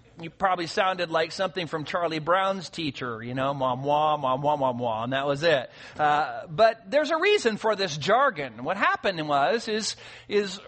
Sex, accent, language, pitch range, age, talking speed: male, American, English, 140-225 Hz, 40-59, 170 wpm